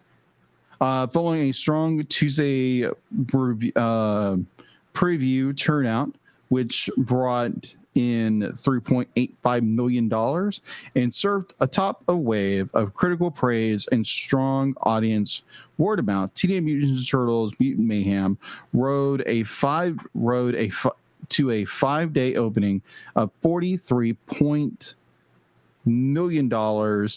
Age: 40-59